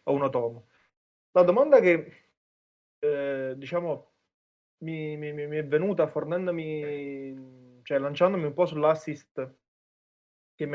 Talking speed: 115 wpm